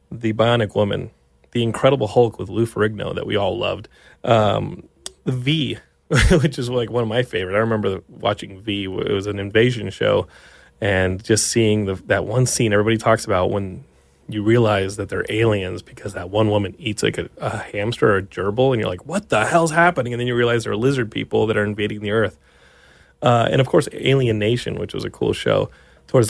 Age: 30-49